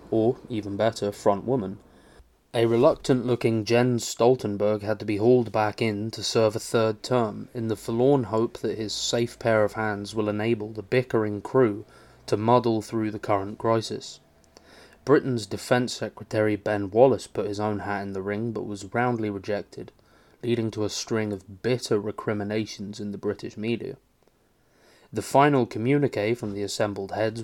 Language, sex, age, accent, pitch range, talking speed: English, male, 20-39, British, 105-115 Hz, 165 wpm